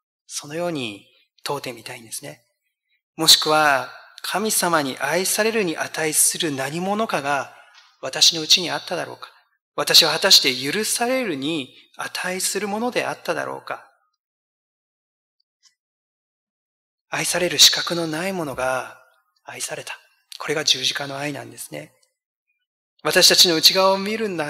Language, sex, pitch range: Japanese, male, 150-210 Hz